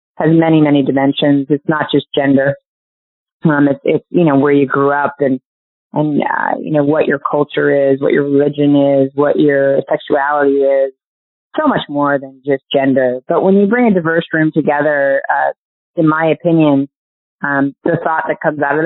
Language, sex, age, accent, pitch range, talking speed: English, female, 30-49, American, 140-155 Hz, 190 wpm